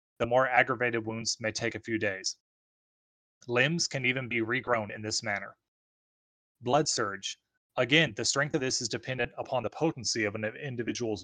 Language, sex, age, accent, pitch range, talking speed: English, male, 30-49, American, 110-135 Hz, 170 wpm